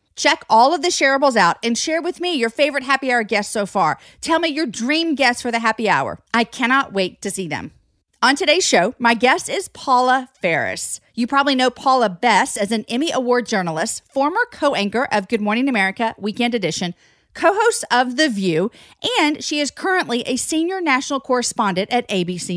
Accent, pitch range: American, 205-270 Hz